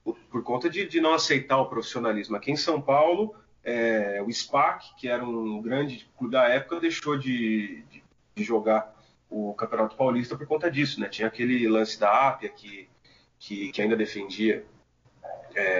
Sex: male